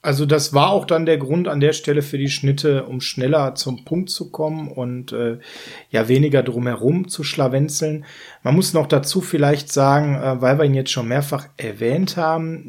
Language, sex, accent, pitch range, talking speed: German, male, German, 130-165 Hz, 195 wpm